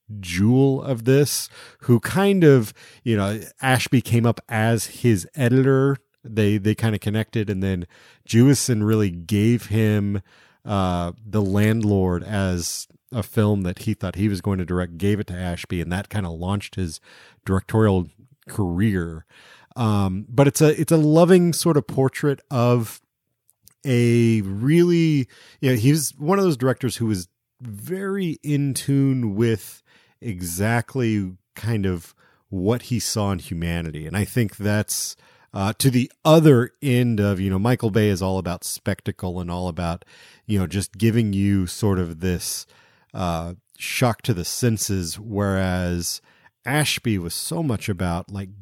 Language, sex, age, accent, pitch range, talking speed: English, male, 30-49, American, 95-120 Hz, 155 wpm